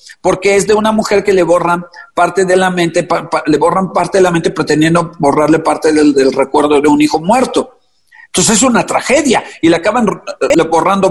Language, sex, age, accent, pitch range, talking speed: Spanish, male, 50-69, Mexican, 165-220 Hz, 195 wpm